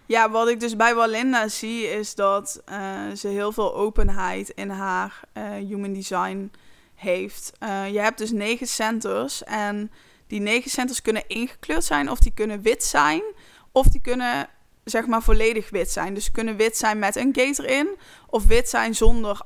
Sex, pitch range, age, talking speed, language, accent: female, 200-230 Hz, 20-39, 180 wpm, Dutch, Dutch